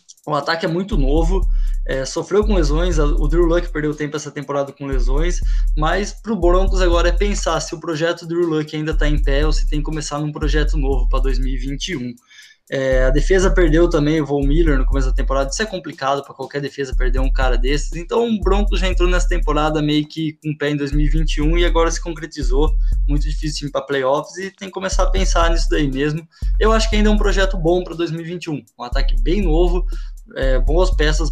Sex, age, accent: male, 20-39, Brazilian